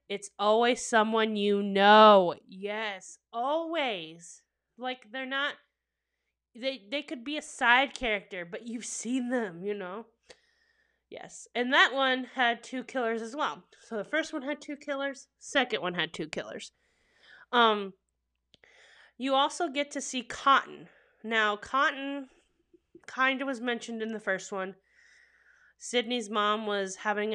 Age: 20-39